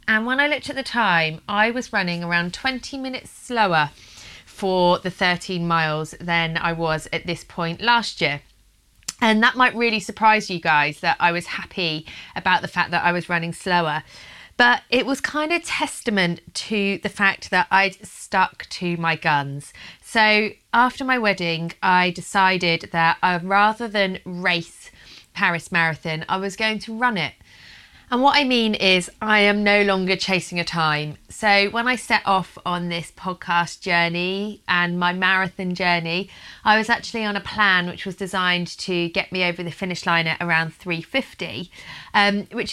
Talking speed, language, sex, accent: 175 wpm, English, female, British